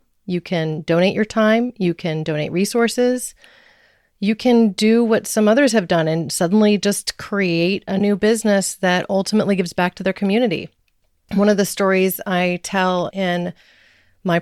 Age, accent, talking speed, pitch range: 30-49, American, 160 wpm, 165-200 Hz